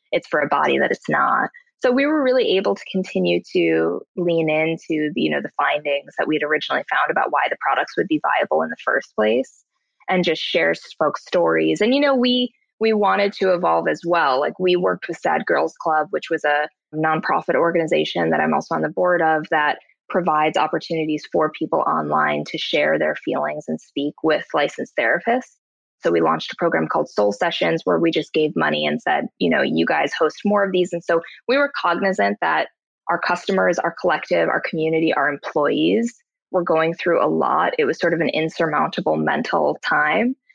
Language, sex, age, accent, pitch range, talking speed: English, female, 20-39, American, 155-205 Hz, 205 wpm